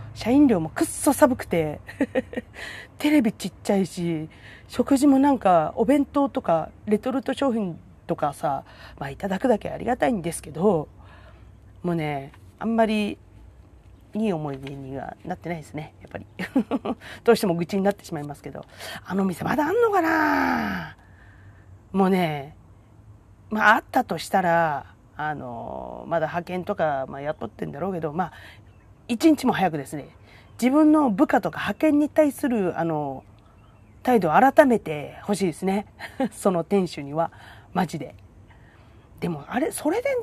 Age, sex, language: 40-59, female, Japanese